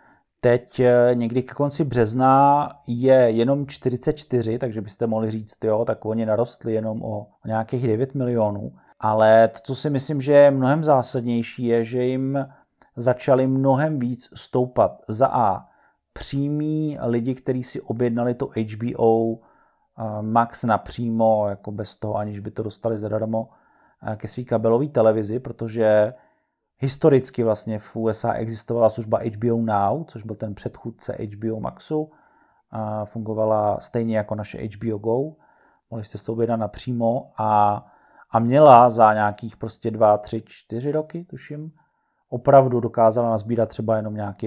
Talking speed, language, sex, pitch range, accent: 140 wpm, Czech, male, 110-130 Hz, native